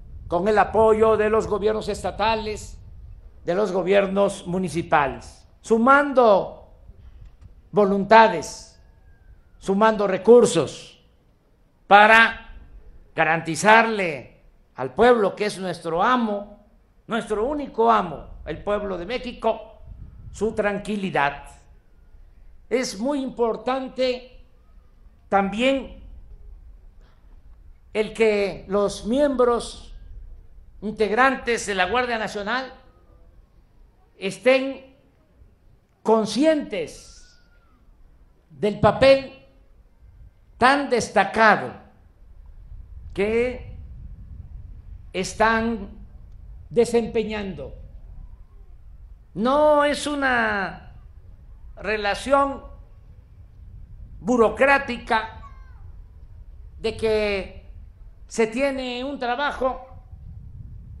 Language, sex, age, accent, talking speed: Spanish, male, 50-69, Mexican, 65 wpm